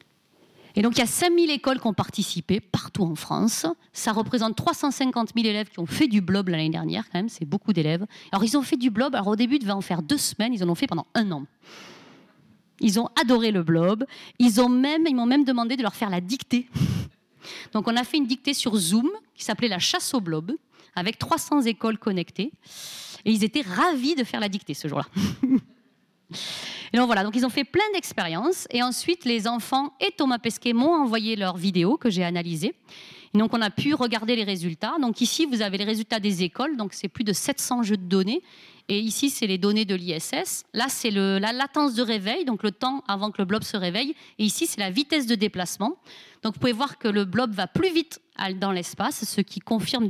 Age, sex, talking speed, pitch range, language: 40-59, female, 225 wpm, 200-265 Hz, French